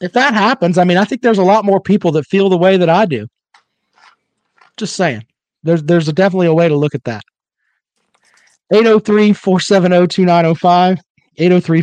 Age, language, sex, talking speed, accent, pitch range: 40-59, English, male, 160 wpm, American, 155-205 Hz